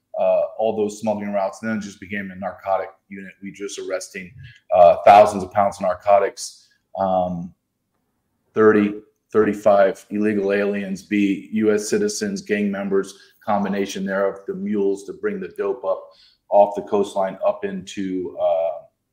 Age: 40-59